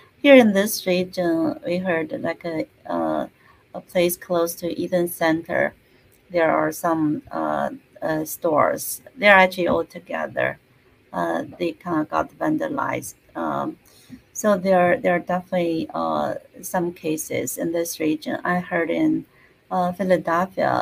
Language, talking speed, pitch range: English, 140 wpm, 160-190 Hz